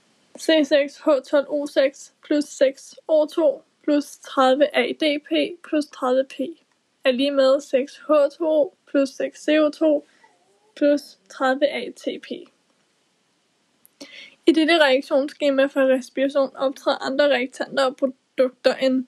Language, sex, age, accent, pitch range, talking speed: Danish, female, 20-39, native, 275-305 Hz, 90 wpm